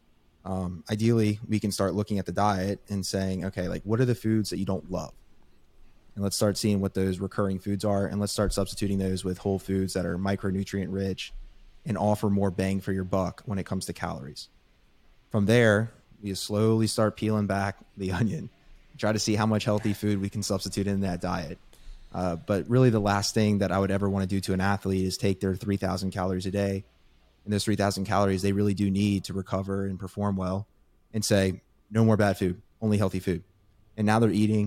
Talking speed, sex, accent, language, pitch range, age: 215 wpm, male, American, English, 95-105 Hz, 20-39